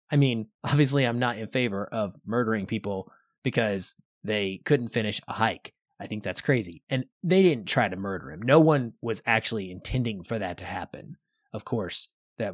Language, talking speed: English, 185 wpm